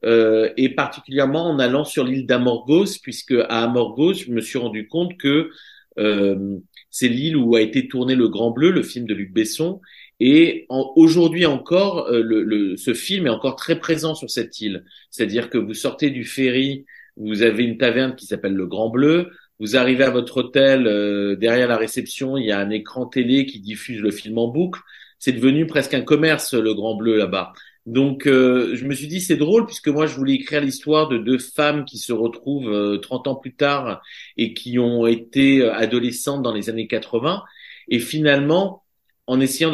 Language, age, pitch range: French, 30-49, 115-150 Hz